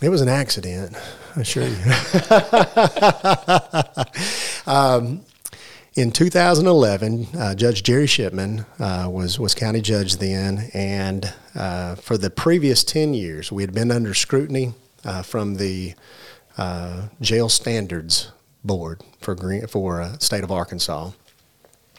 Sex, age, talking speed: male, 40-59, 130 wpm